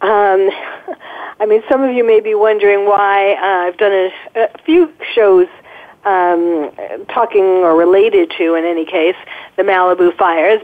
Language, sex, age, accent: English, female, 50-69, American